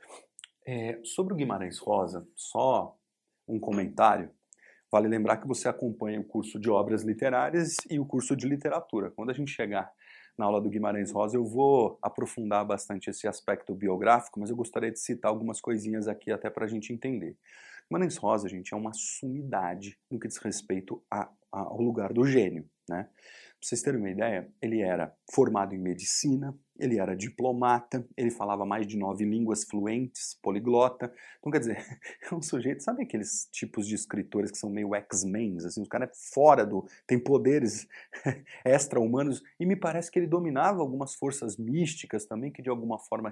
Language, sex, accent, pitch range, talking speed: Portuguese, male, Brazilian, 105-130 Hz, 175 wpm